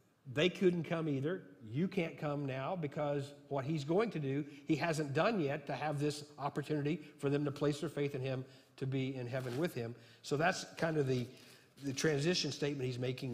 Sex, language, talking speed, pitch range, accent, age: male, English, 205 wpm, 125-150 Hz, American, 50-69